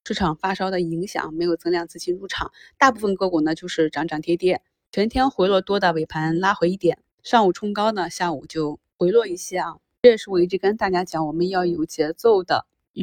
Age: 20-39